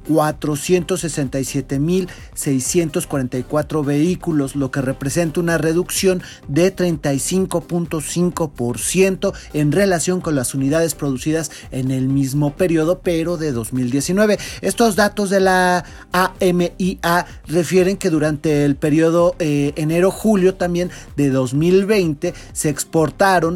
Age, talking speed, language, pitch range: 40-59, 95 wpm, Spanish, 145-180 Hz